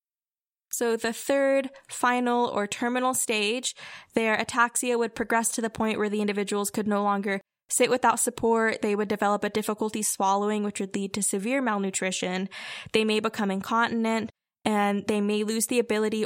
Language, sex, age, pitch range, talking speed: English, female, 10-29, 205-240 Hz, 165 wpm